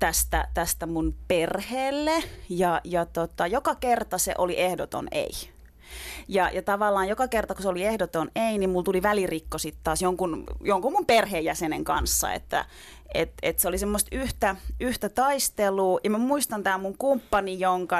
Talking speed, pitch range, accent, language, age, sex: 165 wpm, 185-230 Hz, native, Finnish, 30-49, female